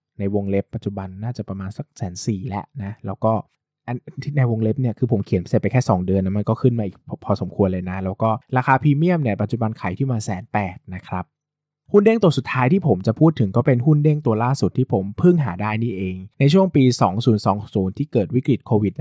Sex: male